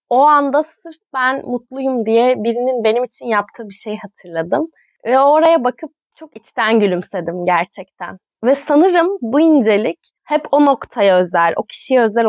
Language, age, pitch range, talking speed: Turkish, 20-39, 220-275 Hz, 150 wpm